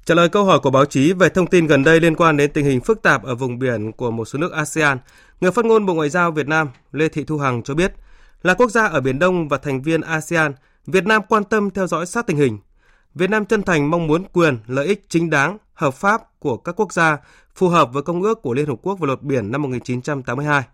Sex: male